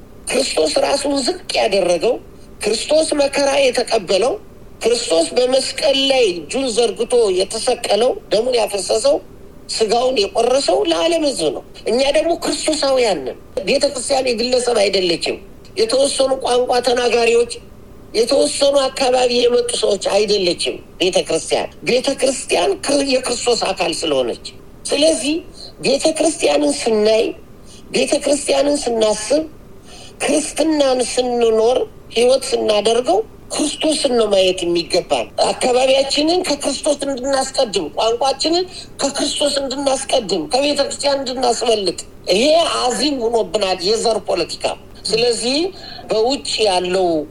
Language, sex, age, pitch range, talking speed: Amharic, male, 50-69, 225-290 Hz, 85 wpm